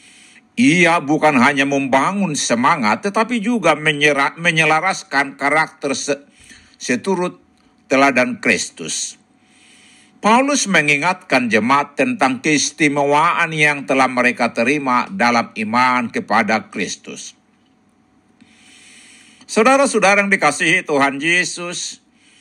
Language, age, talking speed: Indonesian, 60-79, 85 wpm